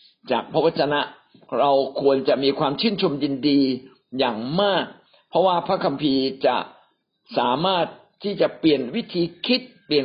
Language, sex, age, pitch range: Thai, male, 60-79, 140-195 Hz